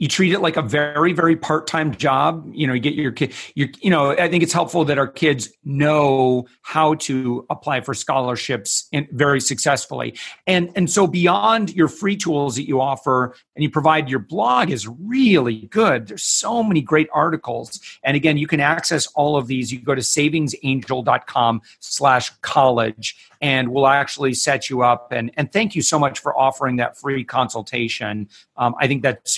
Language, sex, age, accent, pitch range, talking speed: English, male, 40-59, American, 125-155 Hz, 185 wpm